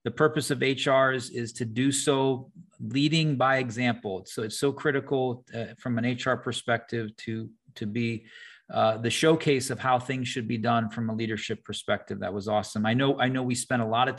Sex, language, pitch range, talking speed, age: male, English, 115-135 Hz, 205 wpm, 30-49